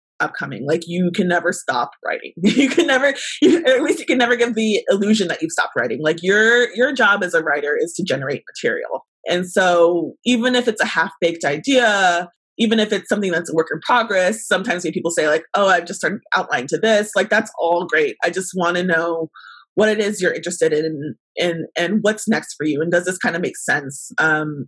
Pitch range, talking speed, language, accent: 160-215 Hz, 220 wpm, English, American